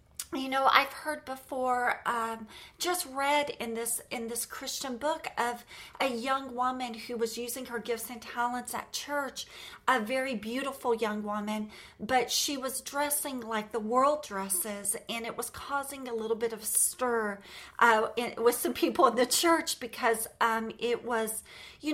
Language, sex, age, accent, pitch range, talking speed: English, female, 40-59, American, 220-270 Hz, 170 wpm